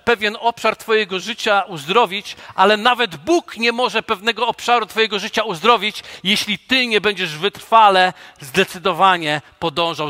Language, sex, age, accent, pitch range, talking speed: Polish, male, 50-69, native, 195-255 Hz, 130 wpm